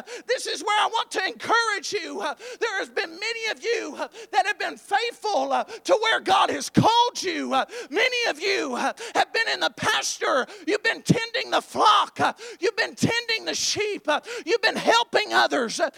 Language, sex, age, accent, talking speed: English, male, 40-59, American, 175 wpm